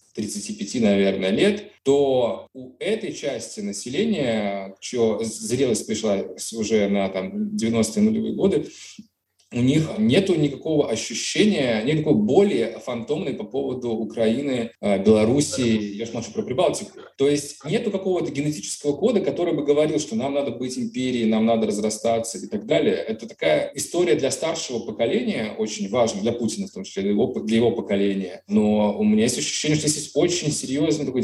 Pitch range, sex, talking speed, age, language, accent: 110-150 Hz, male, 160 wpm, 20-39, Russian, native